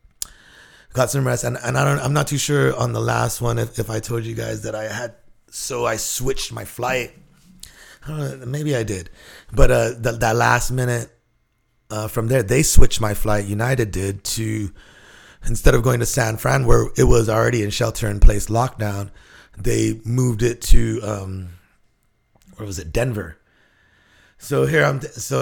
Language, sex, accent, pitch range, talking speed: English, male, American, 100-120 Hz, 185 wpm